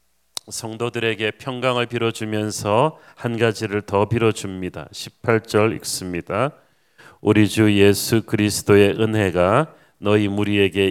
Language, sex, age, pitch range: Korean, male, 40-59, 105-140 Hz